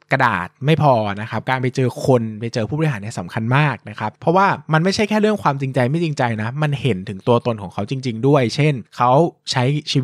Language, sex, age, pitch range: Thai, male, 20-39, 115-150 Hz